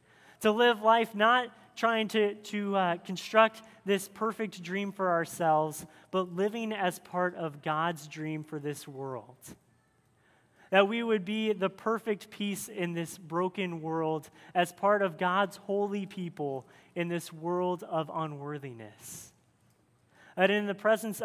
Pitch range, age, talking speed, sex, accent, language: 170-210 Hz, 30-49, 140 wpm, male, American, English